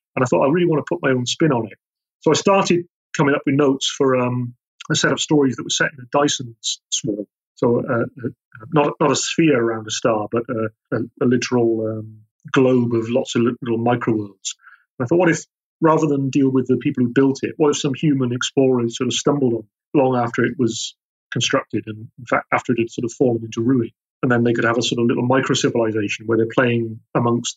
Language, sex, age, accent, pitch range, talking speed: English, male, 40-59, British, 115-140 Hz, 235 wpm